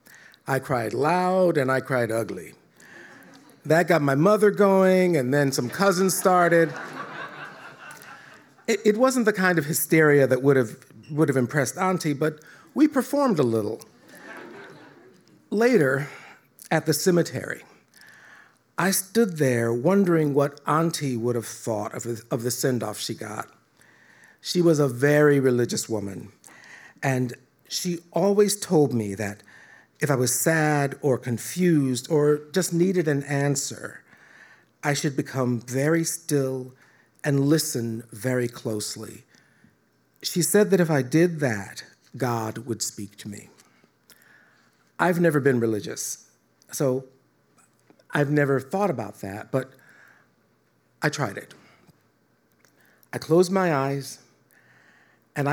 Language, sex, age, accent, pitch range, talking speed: English, male, 50-69, American, 120-170 Hz, 130 wpm